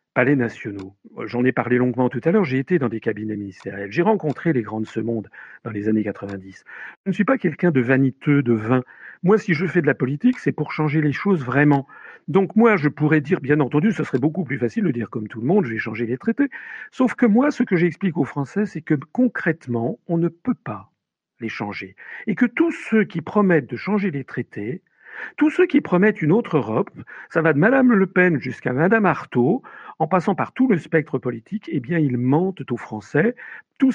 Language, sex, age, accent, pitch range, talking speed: French, male, 50-69, French, 120-180 Hz, 225 wpm